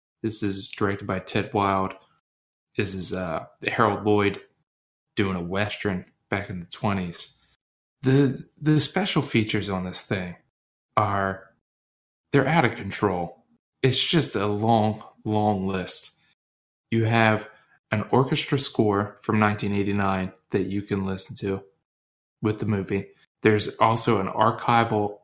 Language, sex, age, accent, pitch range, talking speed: English, male, 20-39, American, 100-120 Hz, 130 wpm